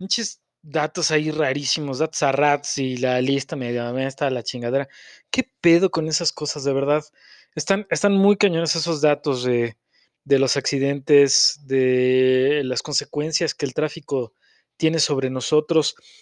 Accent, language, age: Mexican, Spanish, 30-49